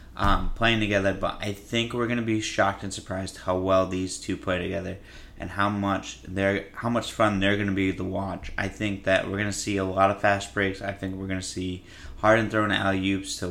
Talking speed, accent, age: 245 wpm, American, 20-39